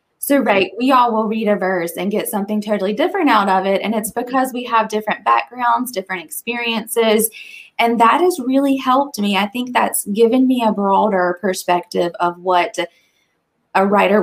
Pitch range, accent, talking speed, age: 200-260 Hz, American, 180 wpm, 20-39